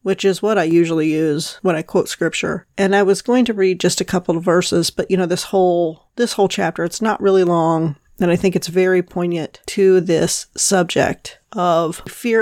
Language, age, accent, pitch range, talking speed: English, 40-59, American, 180-225 Hz, 210 wpm